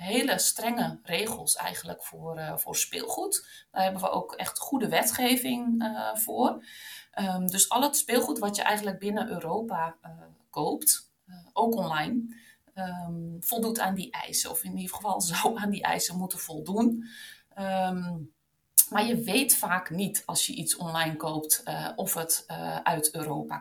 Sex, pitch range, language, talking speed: female, 165-230 Hz, Dutch, 155 wpm